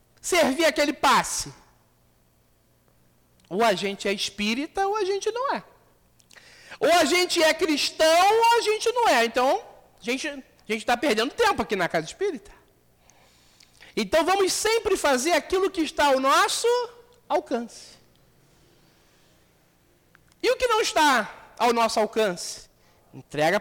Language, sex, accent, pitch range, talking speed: Portuguese, male, Brazilian, 215-350 Hz, 135 wpm